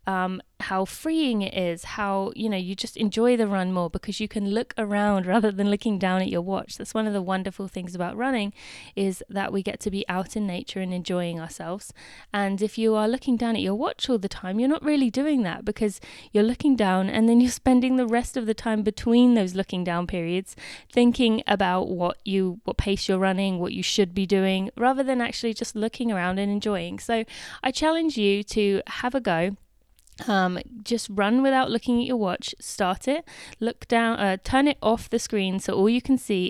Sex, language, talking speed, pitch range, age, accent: female, English, 215 wpm, 190-235 Hz, 20-39, British